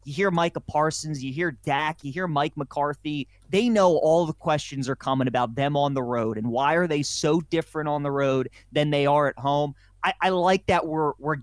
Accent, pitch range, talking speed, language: American, 130-160 Hz, 225 wpm, English